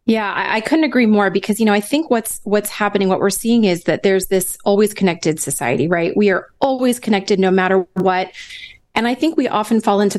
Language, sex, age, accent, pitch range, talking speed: English, female, 30-49, American, 190-245 Hz, 225 wpm